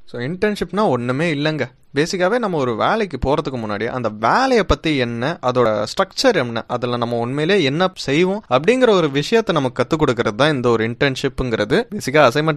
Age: 20-39